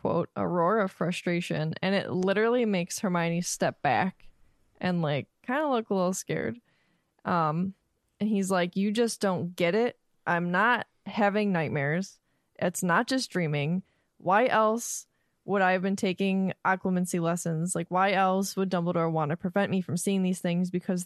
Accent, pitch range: American, 175-210 Hz